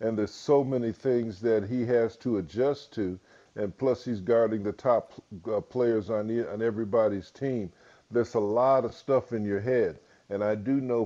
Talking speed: 190 wpm